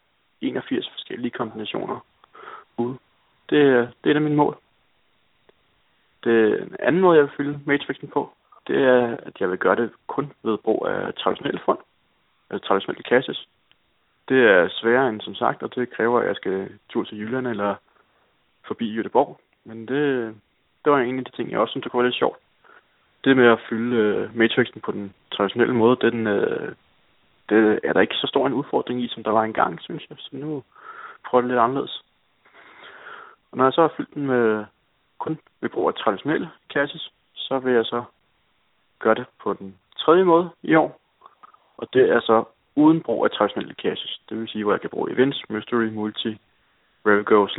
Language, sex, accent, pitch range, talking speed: Danish, male, native, 105-130 Hz, 185 wpm